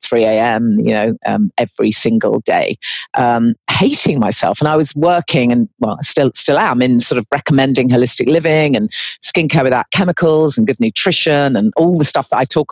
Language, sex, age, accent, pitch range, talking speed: English, female, 40-59, British, 130-170 Hz, 195 wpm